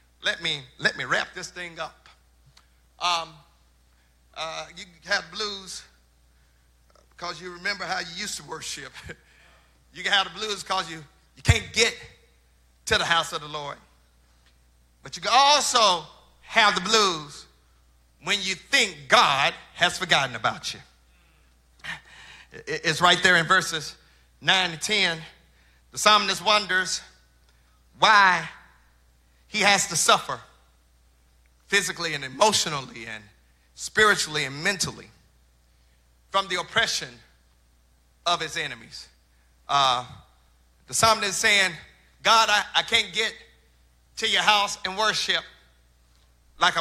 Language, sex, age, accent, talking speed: English, male, 50-69, American, 125 wpm